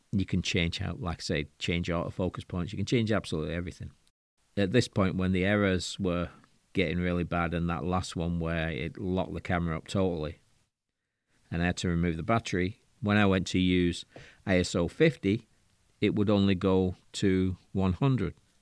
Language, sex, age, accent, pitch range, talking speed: English, male, 40-59, British, 90-105 Hz, 185 wpm